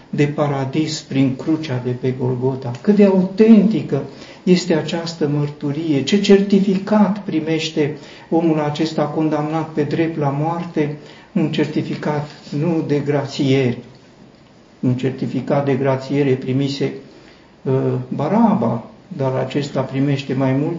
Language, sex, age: Romanian, male, 60-79